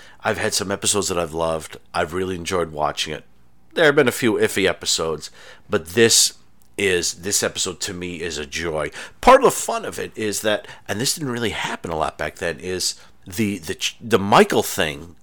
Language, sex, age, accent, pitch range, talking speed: English, male, 40-59, American, 100-125 Hz, 205 wpm